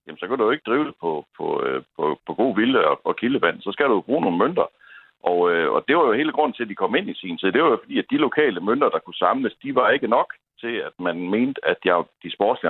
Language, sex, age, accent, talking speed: Danish, male, 60-79, native, 290 wpm